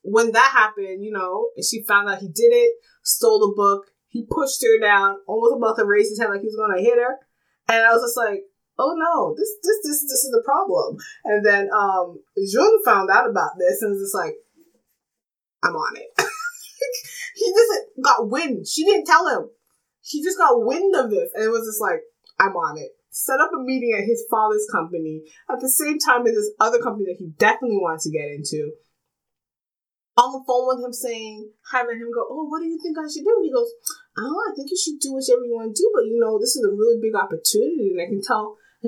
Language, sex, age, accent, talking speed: English, female, 20-39, American, 235 wpm